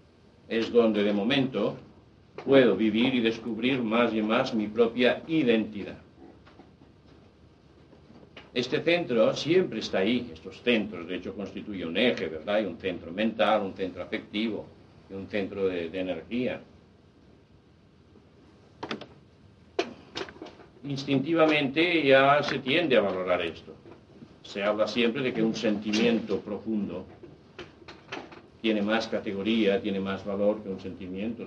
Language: Spanish